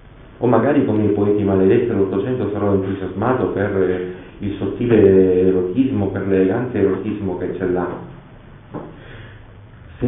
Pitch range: 95-115 Hz